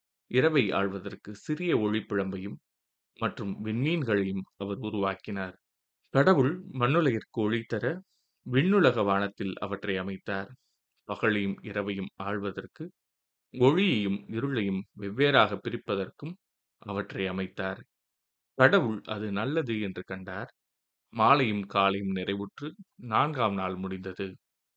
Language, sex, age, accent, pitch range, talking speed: Tamil, male, 30-49, native, 95-120 Hz, 85 wpm